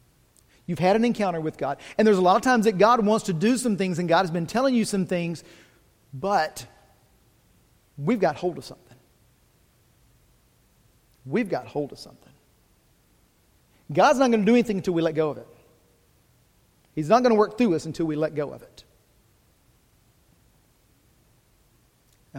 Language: English